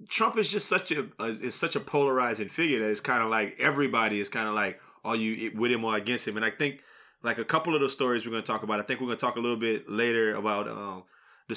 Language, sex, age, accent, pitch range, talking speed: English, male, 20-39, American, 115-165 Hz, 275 wpm